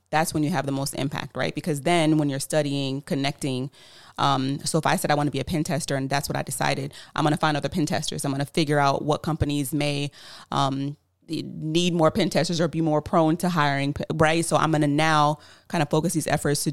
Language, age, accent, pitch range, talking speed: English, 30-49, American, 140-160 Hz, 250 wpm